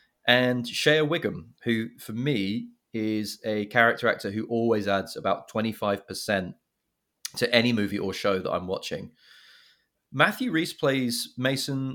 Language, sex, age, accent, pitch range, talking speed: English, male, 30-49, British, 105-125 Hz, 135 wpm